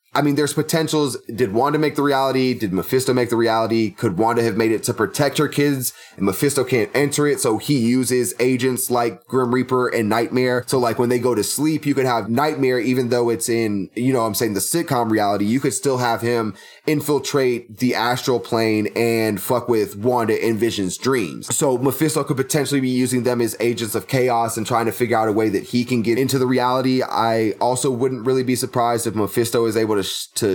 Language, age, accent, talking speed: English, 20-39, American, 220 wpm